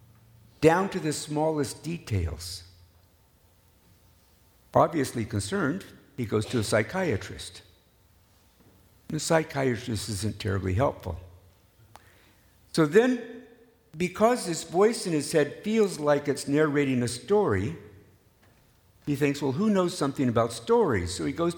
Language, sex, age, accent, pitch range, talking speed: English, male, 60-79, American, 95-150 Hz, 115 wpm